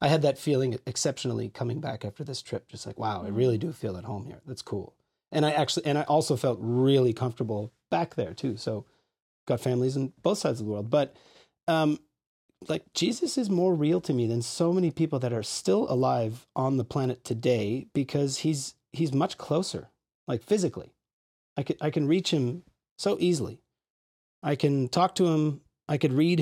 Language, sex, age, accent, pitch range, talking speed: English, male, 40-59, American, 125-150 Hz, 200 wpm